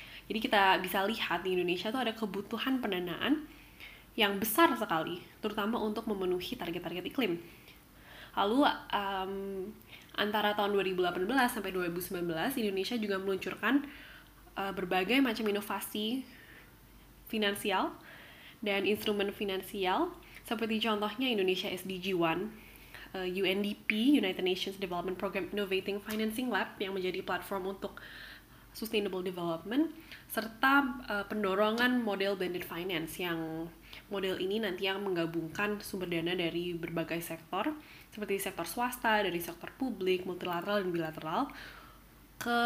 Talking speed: 115 wpm